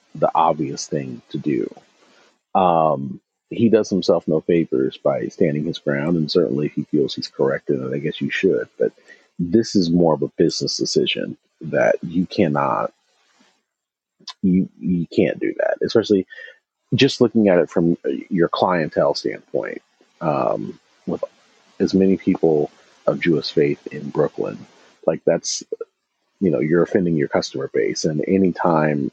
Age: 40-59